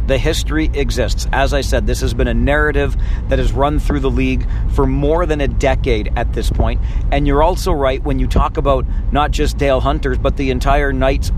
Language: English